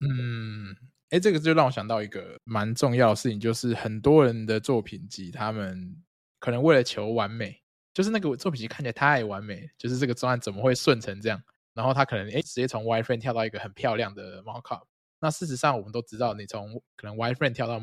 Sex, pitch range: male, 110-140 Hz